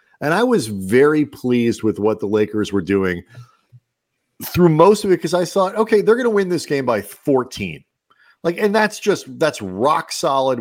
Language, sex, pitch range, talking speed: English, male, 105-155 Hz, 190 wpm